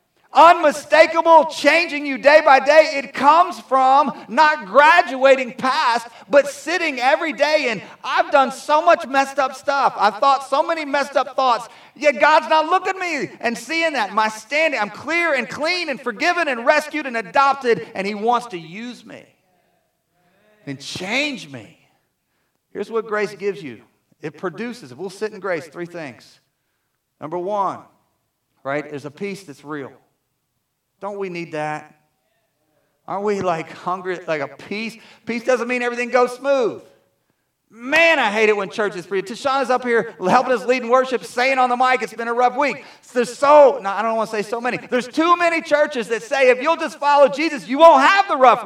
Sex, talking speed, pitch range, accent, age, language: male, 185 wpm, 200-290 Hz, American, 40-59, English